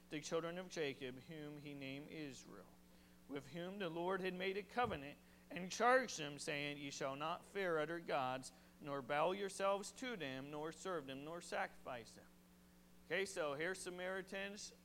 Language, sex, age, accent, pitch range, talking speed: English, male, 40-59, American, 135-190 Hz, 165 wpm